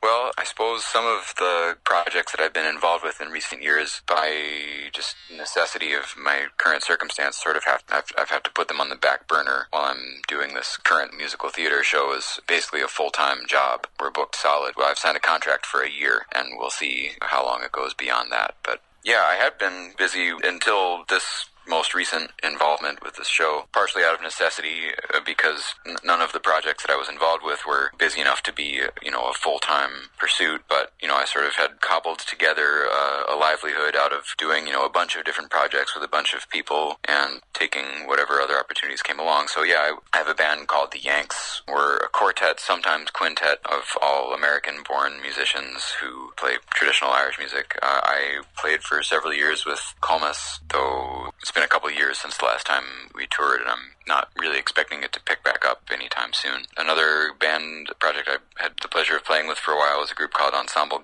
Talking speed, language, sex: 210 wpm, English, male